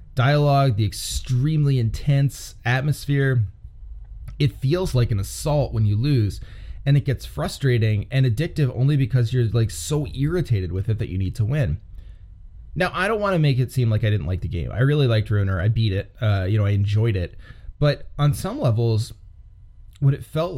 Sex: male